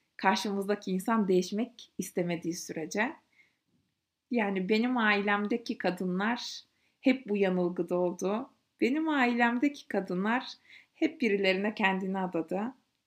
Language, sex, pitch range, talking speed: Turkish, female, 195-250 Hz, 90 wpm